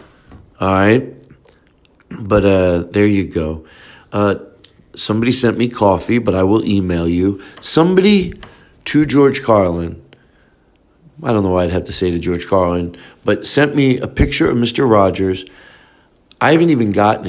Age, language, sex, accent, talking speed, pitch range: 50-69, English, male, American, 155 wpm, 90-115 Hz